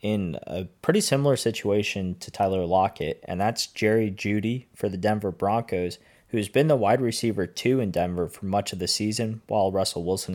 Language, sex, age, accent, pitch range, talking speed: English, male, 20-39, American, 100-115 Hz, 185 wpm